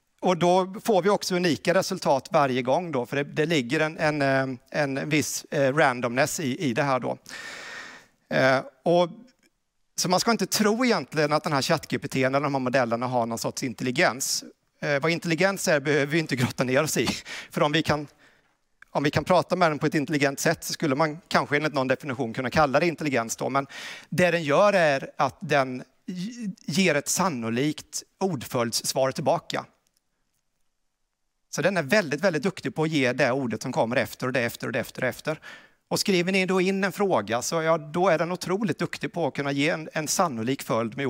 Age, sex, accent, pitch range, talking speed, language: 40-59, male, native, 135-180 Hz, 200 wpm, Swedish